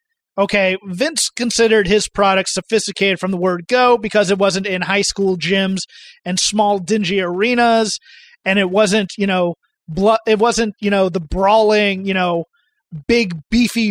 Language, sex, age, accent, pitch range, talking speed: English, male, 30-49, American, 190-235 Hz, 155 wpm